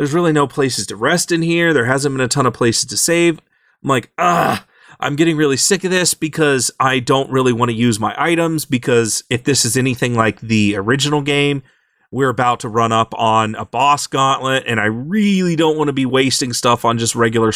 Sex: male